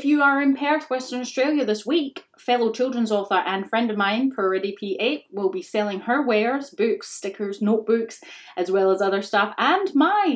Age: 30-49